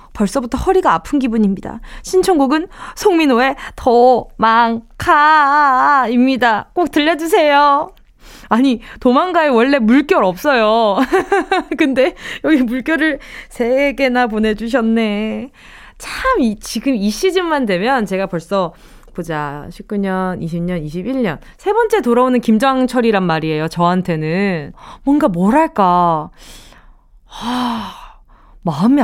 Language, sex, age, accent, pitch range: Korean, female, 20-39, native, 190-285 Hz